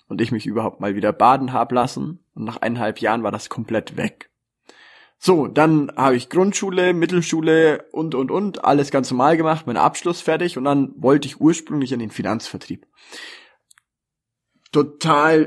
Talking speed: 165 wpm